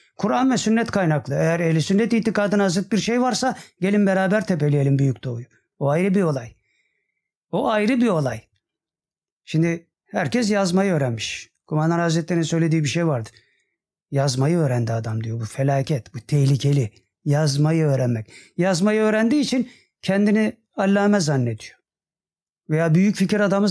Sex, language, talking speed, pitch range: male, Turkish, 140 wpm, 145-200 Hz